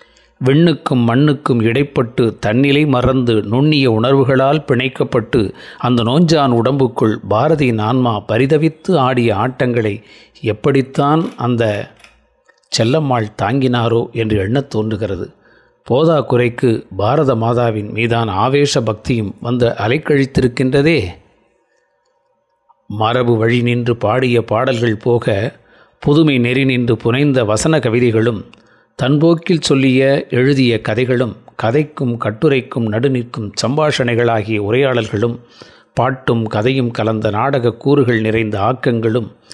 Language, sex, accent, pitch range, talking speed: Tamil, male, native, 115-140 Hz, 90 wpm